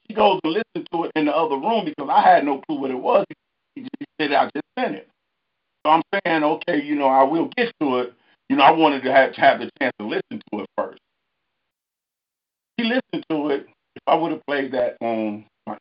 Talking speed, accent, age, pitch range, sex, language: 240 wpm, American, 50-69, 135-205 Hz, male, English